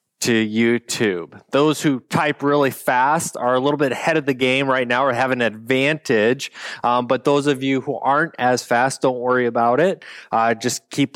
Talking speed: 200 wpm